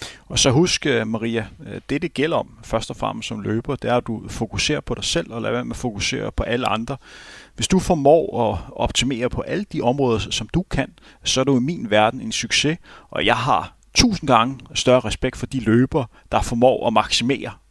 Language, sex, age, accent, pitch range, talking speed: Danish, male, 30-49, native, 115-150 Hz, 215 wpm